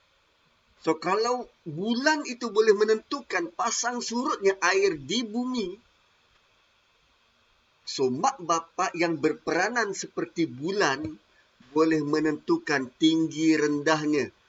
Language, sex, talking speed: Malay, male, 90 wpm